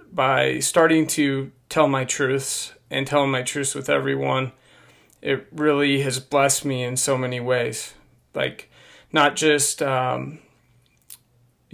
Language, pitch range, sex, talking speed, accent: English, 125-150 Hz, male, 130 wpm, American